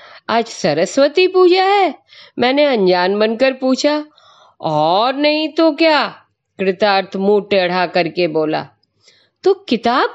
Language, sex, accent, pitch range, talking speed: Hindi, female, native, 180-280 Hz, 120 wpm